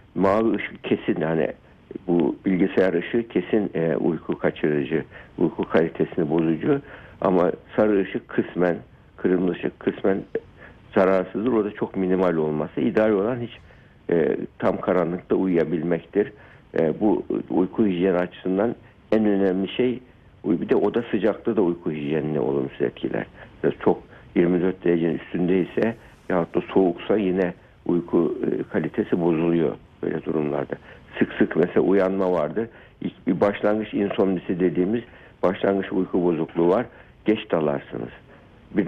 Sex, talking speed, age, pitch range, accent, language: male, 115 wpm, 60-79, 90-110 Hz, native, Turkish